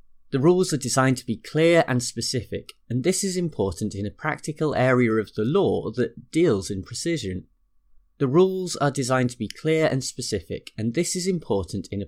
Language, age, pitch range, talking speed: English, 20-39, 100-155 Hz, 195 wpm